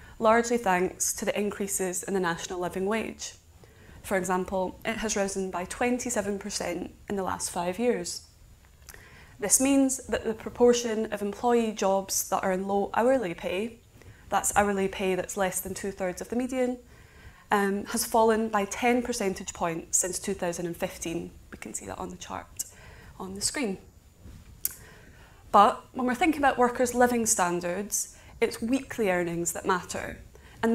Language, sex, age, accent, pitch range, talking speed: English, female, 20-39, British, 180-230 Hz, 155 wpm